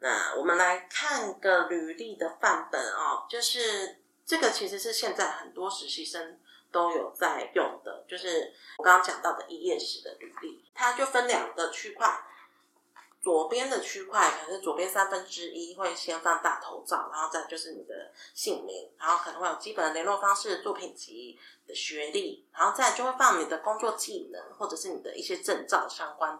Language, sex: Chinese, female